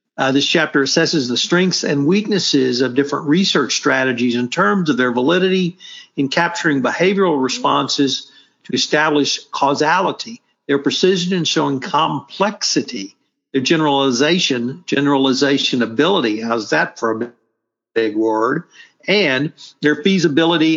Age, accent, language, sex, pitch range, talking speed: 60-79, American, English, male, 135-170 Hz, 120 wpm